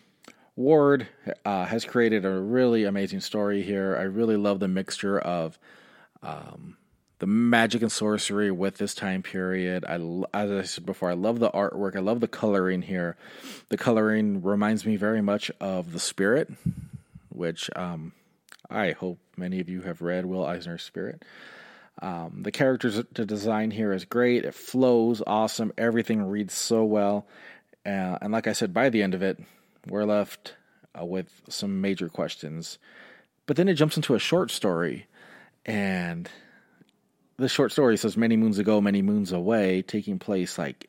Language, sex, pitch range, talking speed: English, male, 95-115 Hz, 165 wpm